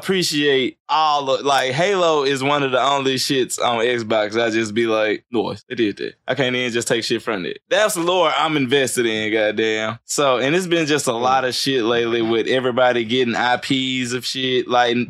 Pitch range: 120-150 Hz